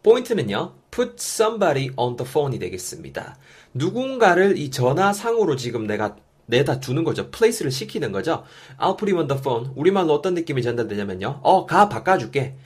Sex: male